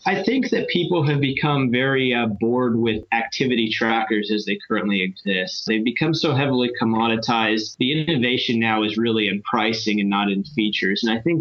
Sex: male